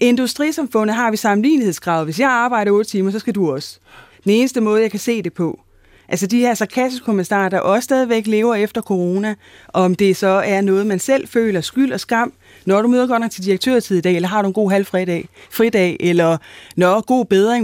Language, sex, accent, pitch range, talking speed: Danish, female, native, 190-245 Hz, 210 wpm